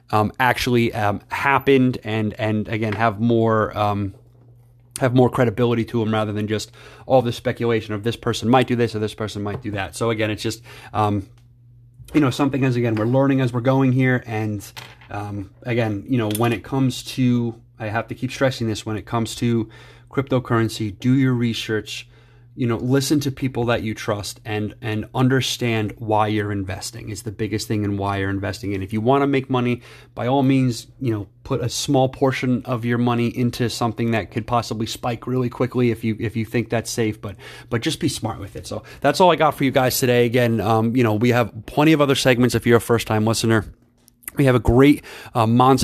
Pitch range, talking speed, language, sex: 110-125 Hz, 215 wpm, English, male